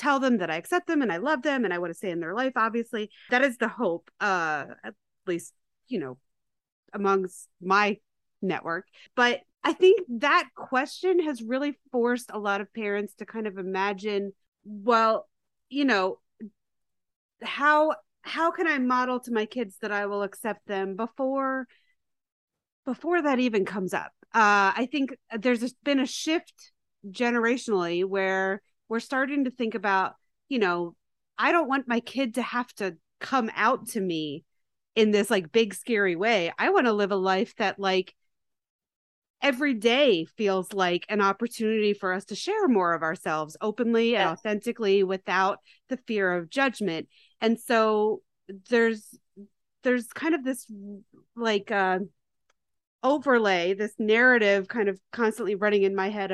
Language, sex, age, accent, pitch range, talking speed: English, female, 30-49, American, 195-255 Hz, 160 wpm